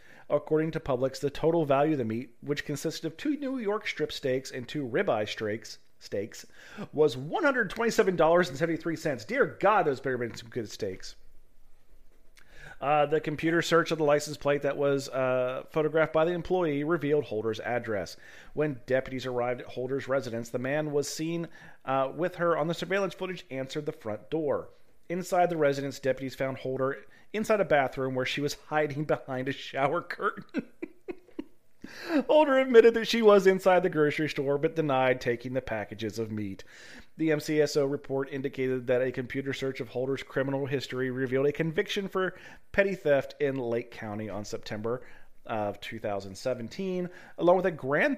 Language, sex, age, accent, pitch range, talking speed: English, male, 40-59, American, 130-170 Hz, 165 wpm